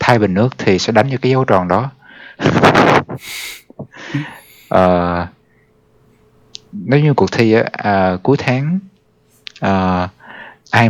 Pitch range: 90-120 Hz